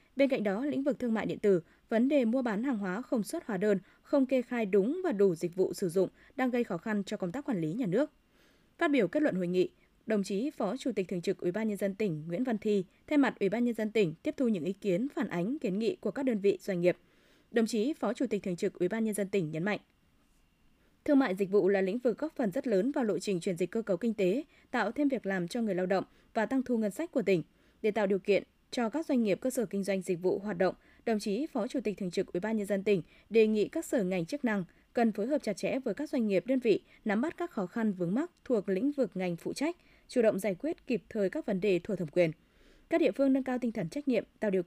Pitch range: 195-265 Hz